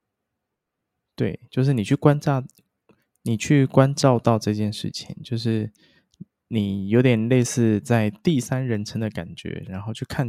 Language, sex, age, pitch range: Chinese, male, 20-39, 105-130 Hz